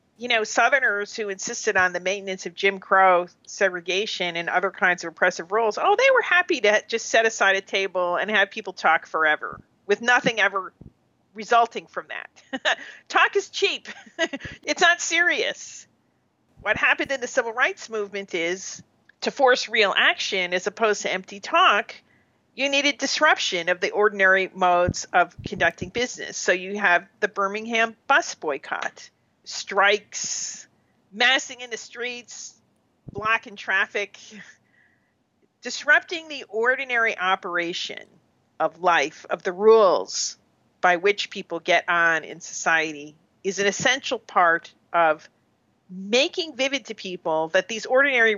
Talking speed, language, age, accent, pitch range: 140 wpm, English, 40-59, American, 185-245 Hz